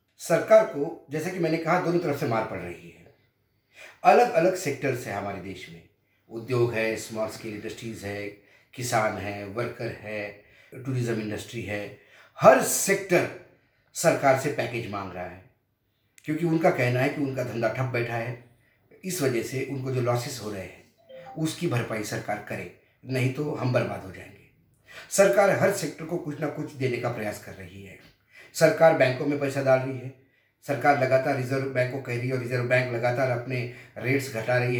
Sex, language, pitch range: male, Hindi, 115-140 Hz